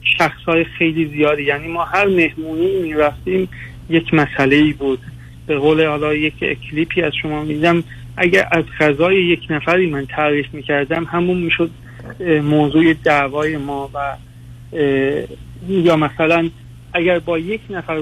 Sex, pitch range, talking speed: male, 140-170 Hz, 140 wpm